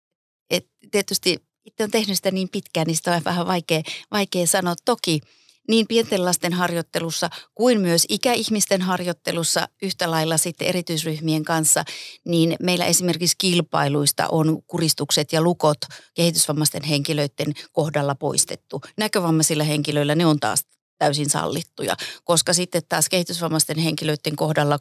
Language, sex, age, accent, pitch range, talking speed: Finnish, female, 30-49, native, 155-185 Hz, 130 wpm